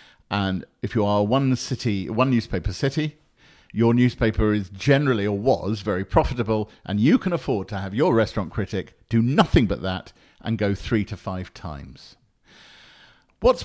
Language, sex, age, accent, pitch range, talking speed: English, male, 50-69, British, 95-125 Hz, 165 wpm